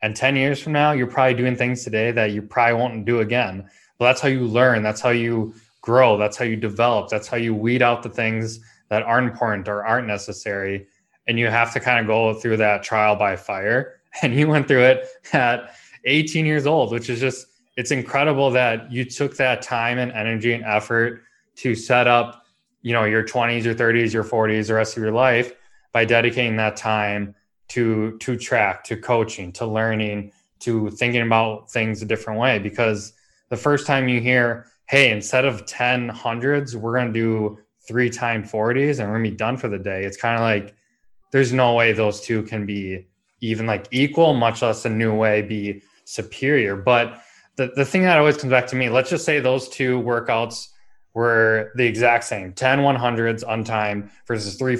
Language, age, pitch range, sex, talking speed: English, 20-39, 110-125 Hz, male, 205 wpm